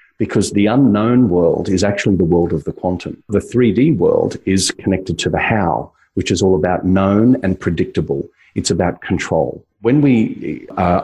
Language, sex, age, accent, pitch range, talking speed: English, male, 40-59, Australian, 85-100 Hz, 175 wpm